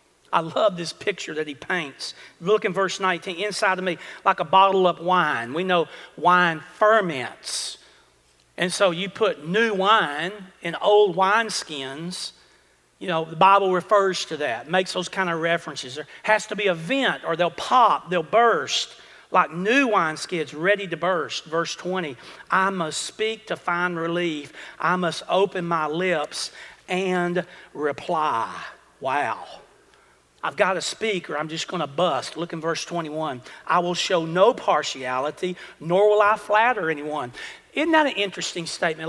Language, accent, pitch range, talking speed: English, American, 170-210 Hz, 160 wpm